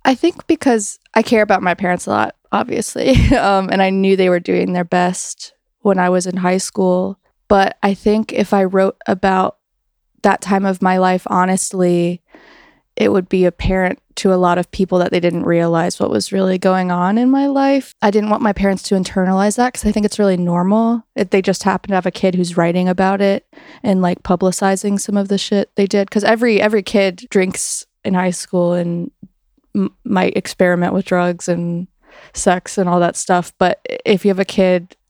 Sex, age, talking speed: female, 20-39, 205 wpm